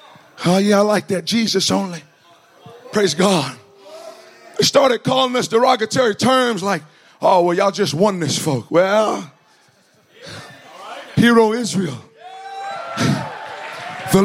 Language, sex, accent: English, male, American